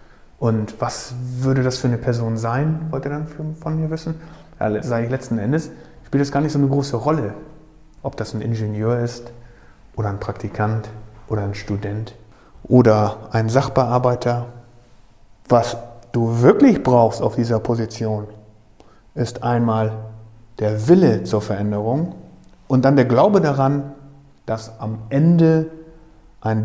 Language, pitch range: German, 110-135 Hz